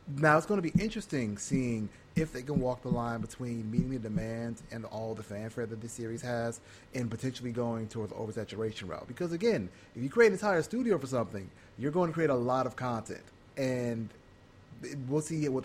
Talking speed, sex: 205 wpm, male